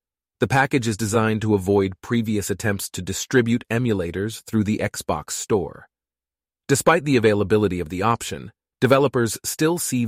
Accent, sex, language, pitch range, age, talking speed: American, male, English, 95-115 Hz, 30-49, 145 wpm